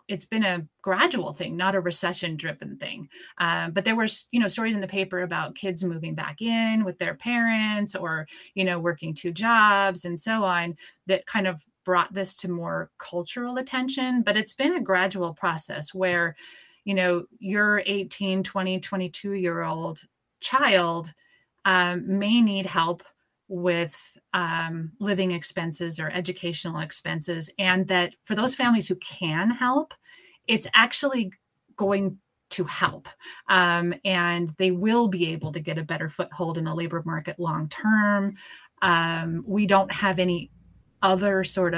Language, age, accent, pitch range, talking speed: English, 30-49, American, 170-205 Hz, 160 wpm